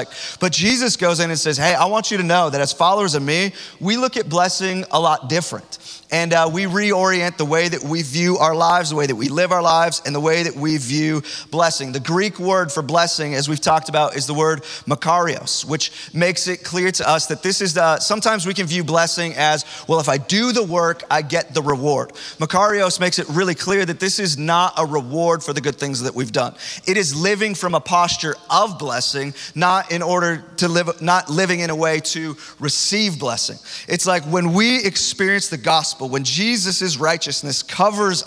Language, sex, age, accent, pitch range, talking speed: English, male, 30-49, American, 150-180 Hz, 215 wpm